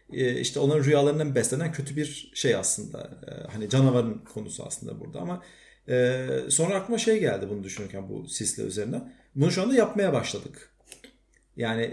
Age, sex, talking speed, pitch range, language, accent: 40-59, male, 155 wpm, 115-145 Hz, Turkish, native